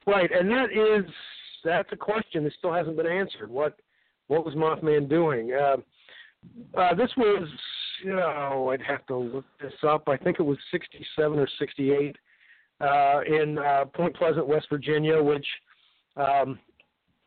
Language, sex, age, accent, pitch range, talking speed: English, male, 50-69, American, 140-170 Hz, 155 wpm